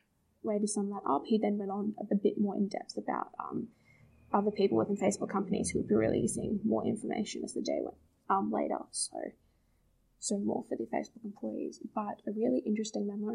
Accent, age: Australian, 10-29